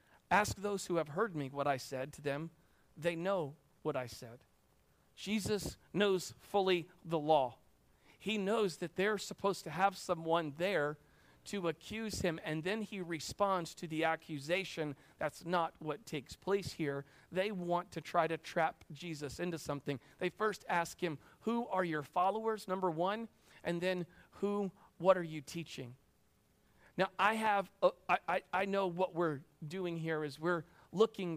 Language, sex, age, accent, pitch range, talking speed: English, male, 40-59, American, 155-190 Hz, 165 wpm